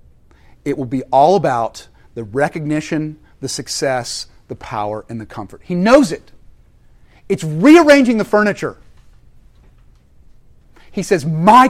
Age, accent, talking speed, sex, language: 40-59, American, 125 wpm, male, English